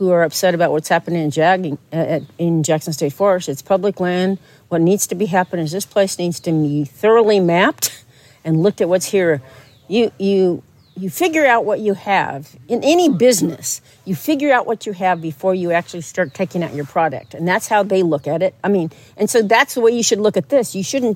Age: 50-69